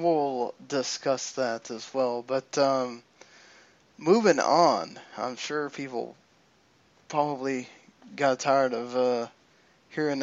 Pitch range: 130-155 Hz